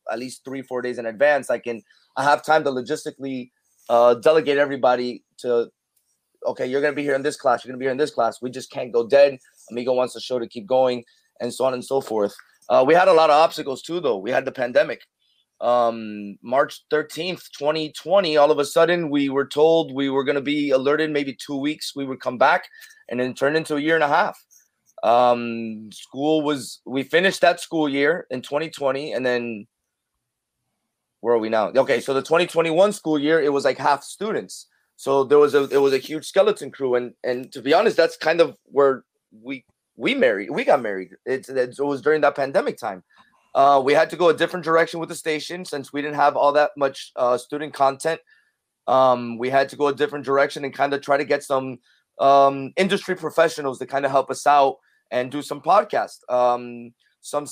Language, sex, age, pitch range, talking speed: English, male, 30-49, 125-150 Hz, 220 wpm